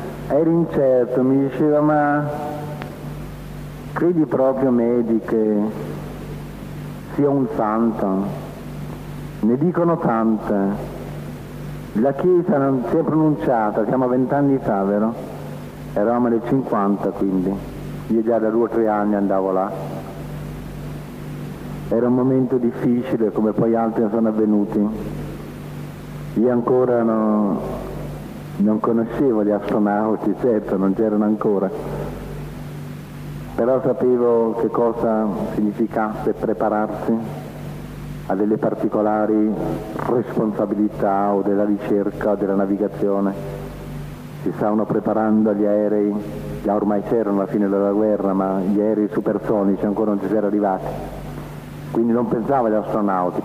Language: Italian